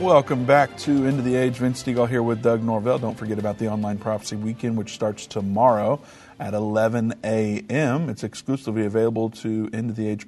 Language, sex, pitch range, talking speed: English, male, 100-120 Hz, 185 wpm